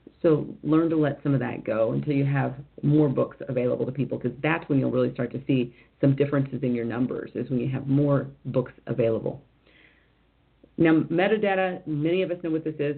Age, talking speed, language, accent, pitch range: 40-59, 210 wpm, English, American, 135-155 Hz